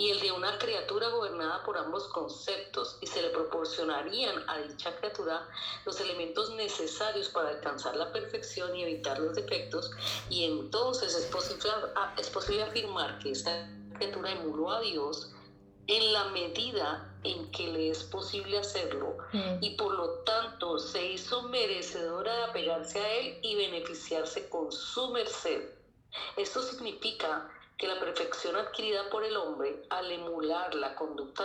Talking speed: 150 wpm